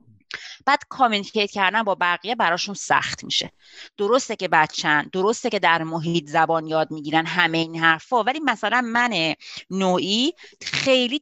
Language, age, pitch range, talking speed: Persian, 30-49, 180-255 Hz, 140 wpm